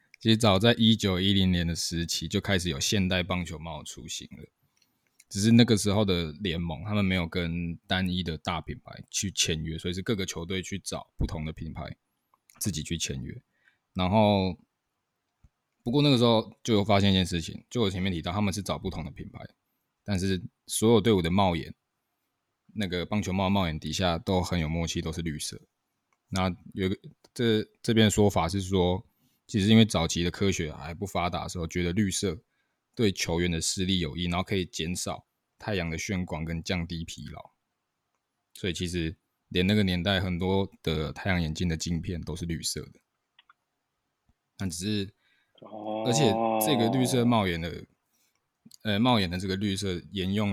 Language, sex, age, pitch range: Chinese, male, 20-39, 85-105 Hz